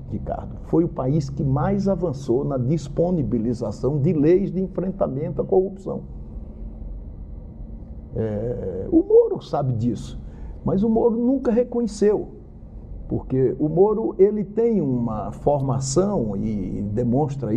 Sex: male